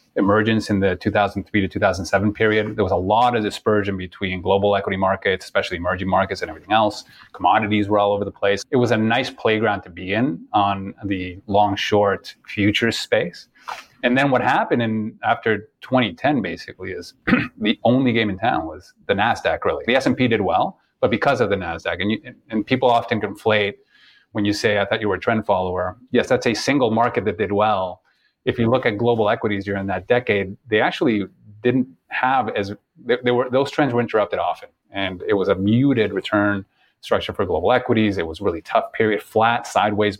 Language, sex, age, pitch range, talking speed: English, male, 30-49, 100-115 Hz, 195 wpm